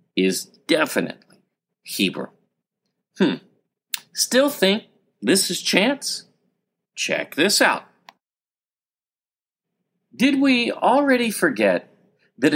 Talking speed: 80 wpm